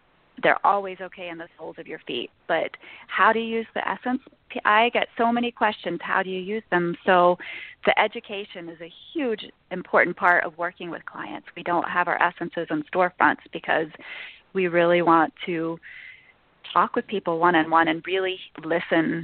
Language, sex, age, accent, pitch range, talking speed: English, female, 30-49, American, 175-215 Hz, 180 wpm